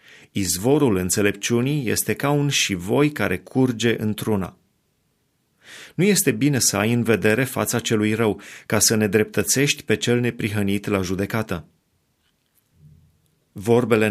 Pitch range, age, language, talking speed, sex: 105-130 Hz, 30-49, Romanian, 130 wpm, male